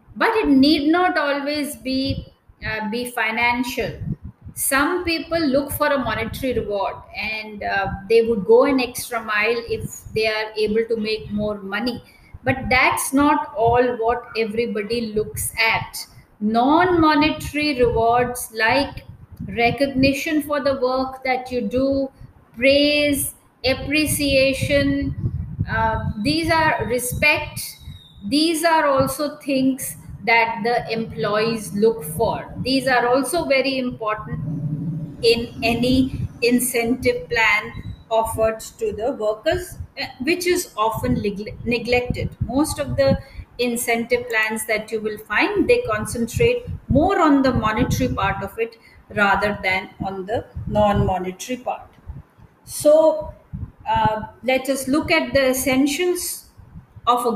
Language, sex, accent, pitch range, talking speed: English, female, Indian, 220-285 Hz, 120 wpm